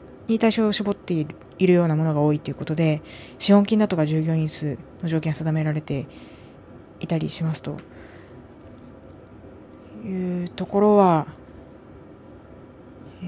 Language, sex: Japanese, female